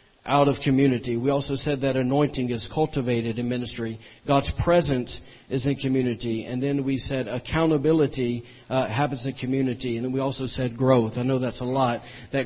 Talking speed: 185 wpm